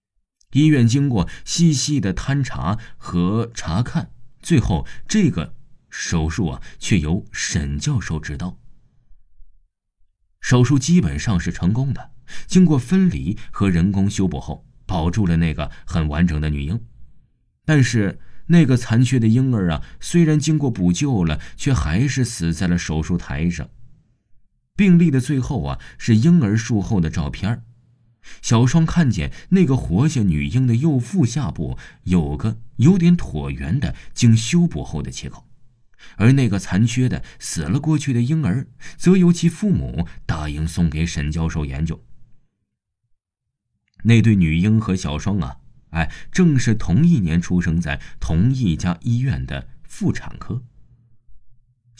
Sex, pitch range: male, 85-130 Hz